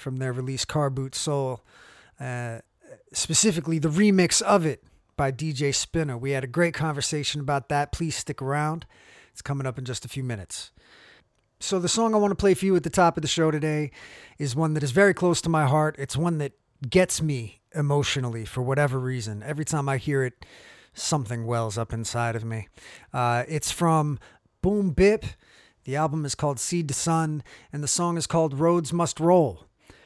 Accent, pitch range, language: American, 130-165 Hz, English